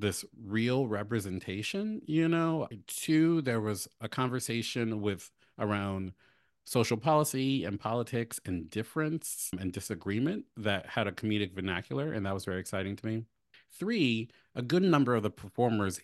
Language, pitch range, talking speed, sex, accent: English, 95-120 Hz, 145 wpm, male, American